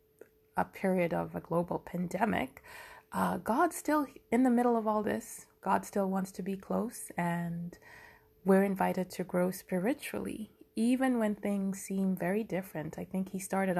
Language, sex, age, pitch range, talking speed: English, female, 20-39, 175-220 Hz, 160 wpm